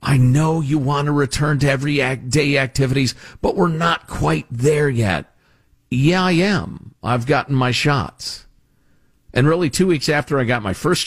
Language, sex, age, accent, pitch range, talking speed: English, male, 50-69, American, 125-205 Hz, 175 wpm